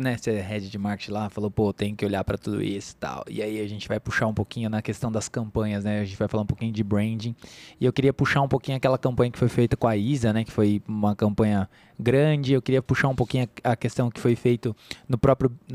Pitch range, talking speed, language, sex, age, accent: 115-155 Hz, 255 wpm, Portuguese, male, 20-39, Brazilian